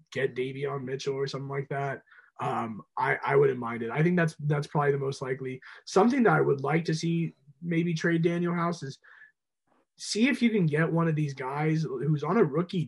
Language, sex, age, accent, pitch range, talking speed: English, male, 20-39, American, 135-165 Hz, 215 wpm